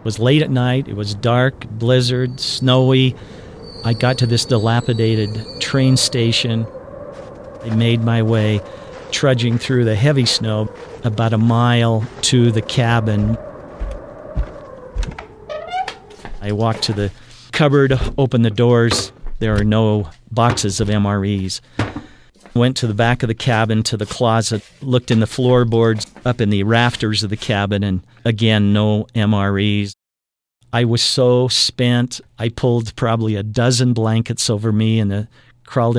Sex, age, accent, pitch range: male, 50-69, American, 110-125 Hz